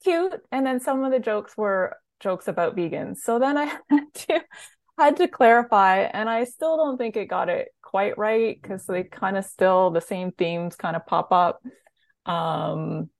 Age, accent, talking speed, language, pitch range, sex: 20-39, American, 190 wpm, English, 170-230 Hz, female